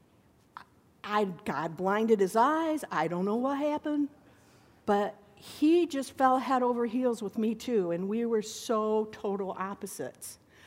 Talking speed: 145 wpm